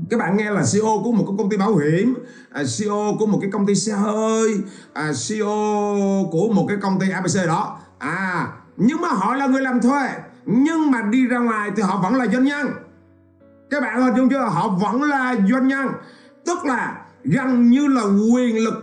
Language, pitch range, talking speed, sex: Vietnamese, 195-255 Hz, 210 wpm, male